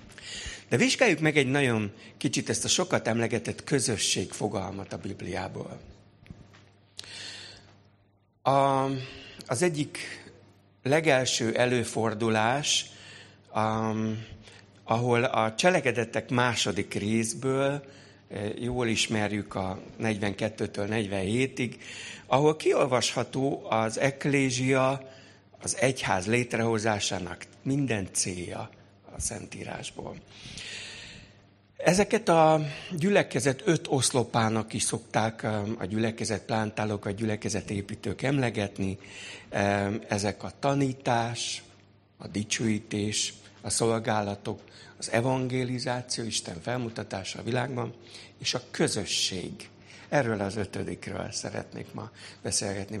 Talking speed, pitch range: 85 wpm, 100-125 Hz